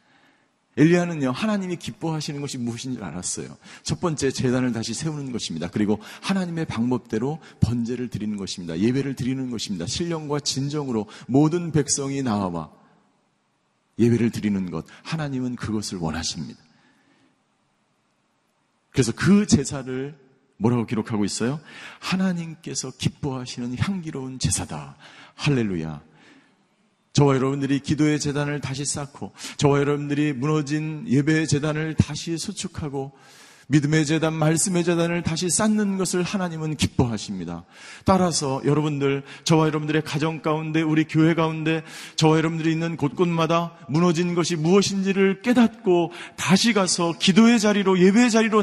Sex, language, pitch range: male, Korean, 130-175 Hz